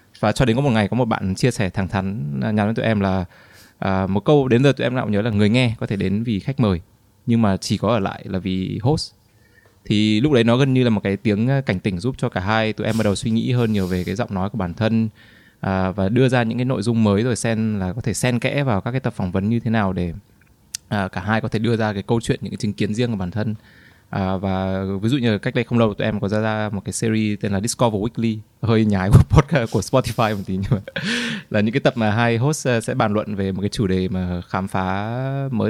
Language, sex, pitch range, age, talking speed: Vietnamese, male, 100-115 Hz, 20-39, 280 wpm